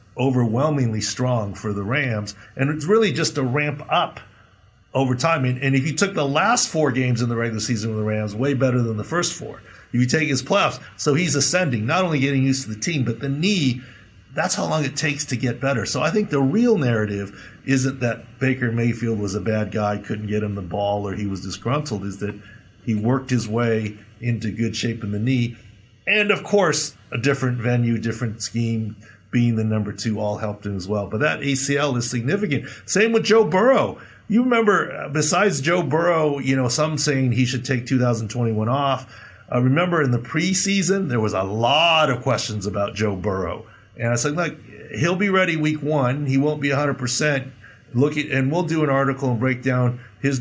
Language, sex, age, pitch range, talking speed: English, male, 50-69, 110-145 Hz, 210 wpm